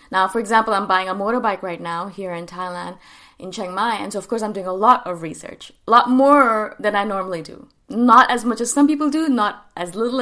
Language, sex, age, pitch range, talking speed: English, female, 20-39, 195-280 Hz, 245 wpm